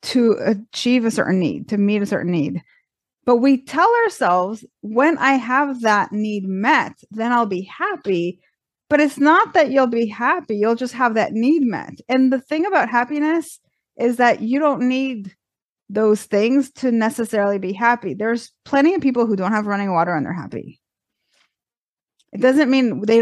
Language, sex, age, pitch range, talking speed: English, female, 30-49, 205-265 Hz, 180 wpm